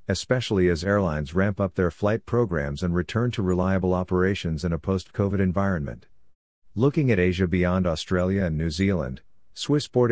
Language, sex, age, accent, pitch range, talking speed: English, male, 50-69, American, 85-105 Hz, 155 wpm